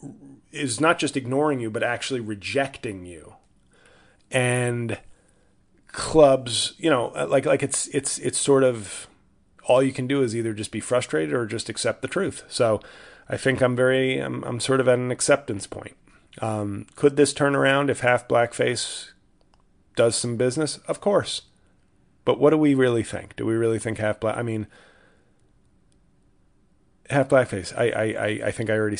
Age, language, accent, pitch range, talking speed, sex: 30-49, English, American, 105-130 Hz, 170 wpm, male